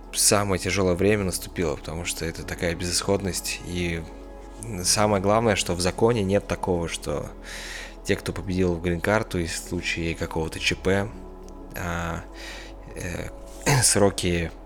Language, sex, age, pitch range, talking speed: Russian, male, 20-39, 85-100 Hz, 125 wpm